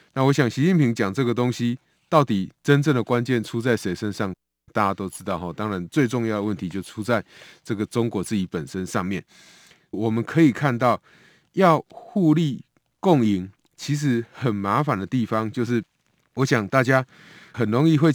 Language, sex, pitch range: Chinese, male, 105-135 Hz